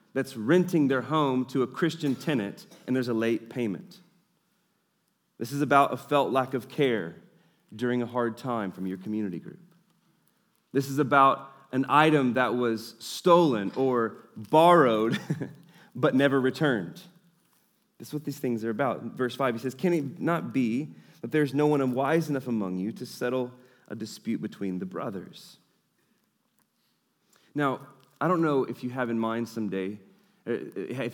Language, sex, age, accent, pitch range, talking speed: English, male, 30-49, American, 120-170 Hz, 160 wpm